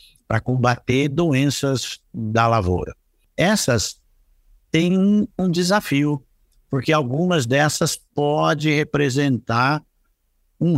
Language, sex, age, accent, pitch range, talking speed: Portuguese, male, 60-79, Brazilian, 115-150 Hz, 90 wpm